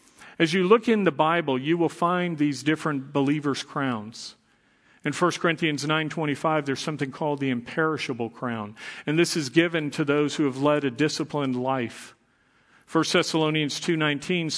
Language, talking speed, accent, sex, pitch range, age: English, 155 wpm, American, male, 135-155 Hz, 50-69